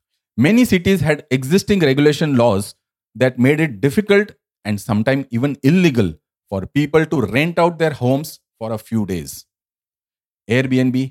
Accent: Indian